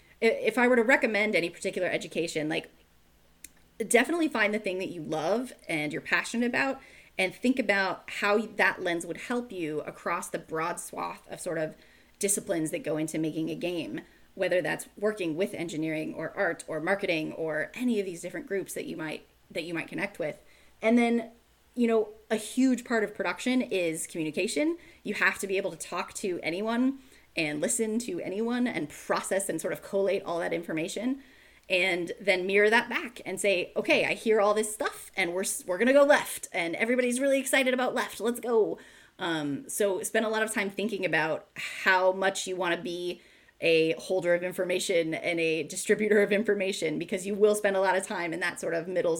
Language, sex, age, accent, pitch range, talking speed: English, female, 20-39, American, 170-225 Hz, 200 wpm